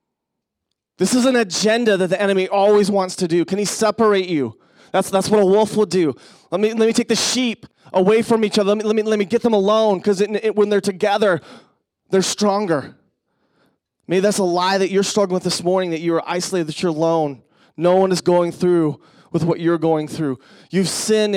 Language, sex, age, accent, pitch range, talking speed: English, male, 30-49, American, 155-200 Hz, 215 wpm